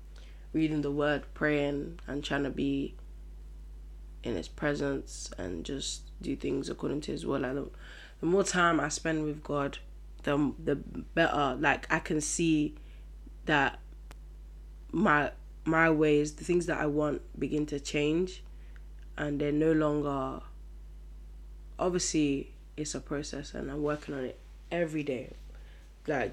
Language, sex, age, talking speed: English, female, 10-29, 140 wpm